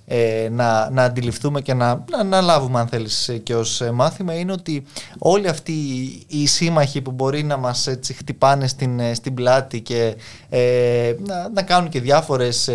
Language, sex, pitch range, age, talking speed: Greek, male, 115-160 Hz, 20-39, 165 wpm